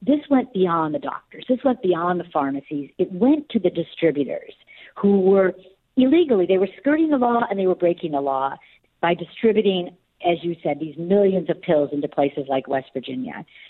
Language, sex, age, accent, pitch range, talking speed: English, female, 50-69, American, 160-230 Hz, 190 wpm